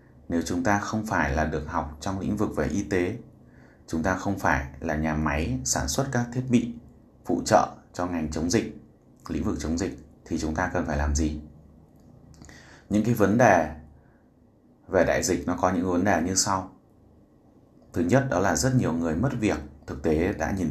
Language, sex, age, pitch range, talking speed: Vietnamese, male, 20-39, 75-100 Hz, 205 wpm